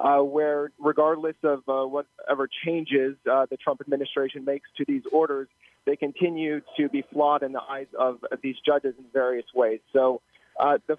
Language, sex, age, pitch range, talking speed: English, male, 30-49, 130-150 Hz, 175 wpm